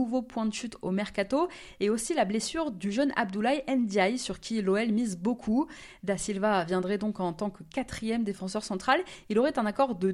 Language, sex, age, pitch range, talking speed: French, female, 20-39, 195-270 Hz, 200 wpm